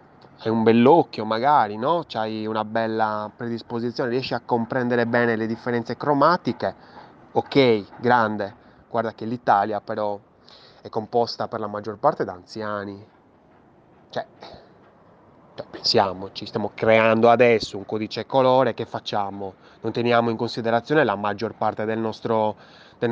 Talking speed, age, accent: 130 wpm, 20-39, native